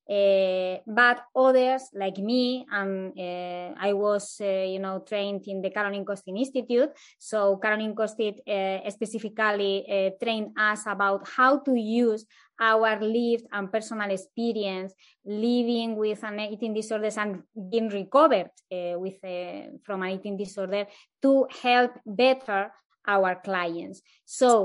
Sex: female